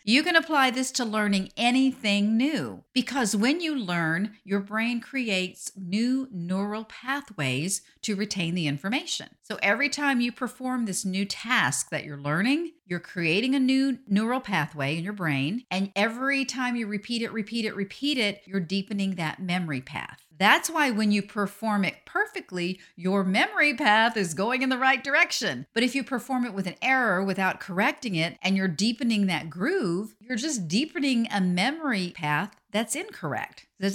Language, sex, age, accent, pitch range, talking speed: English, female, 50-69, American, 185-260 Hz, 175 wpm